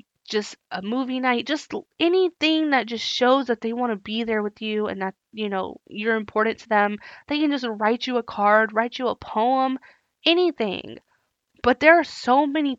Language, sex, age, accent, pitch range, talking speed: English, female, 20-39, American, 210-255 Hz, 195 wpm